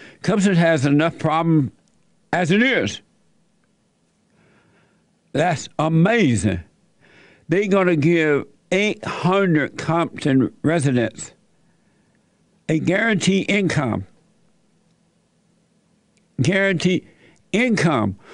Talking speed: 70 wpm